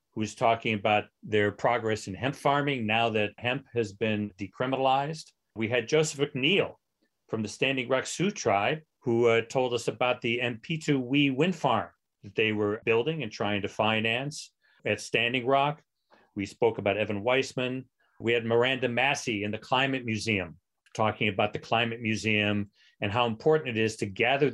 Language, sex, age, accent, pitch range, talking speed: English, male, 40-59, American, 105-125 Hz, 170 wpm